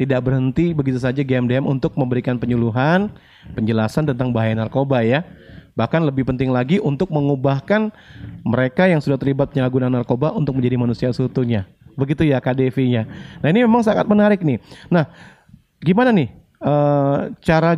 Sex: male